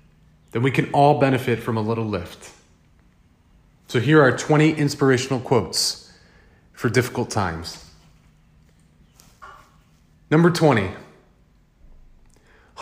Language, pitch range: English, 90-145 Hz